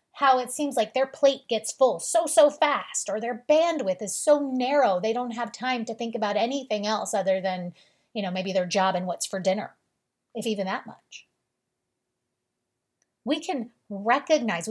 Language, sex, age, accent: English, female, 30-49, American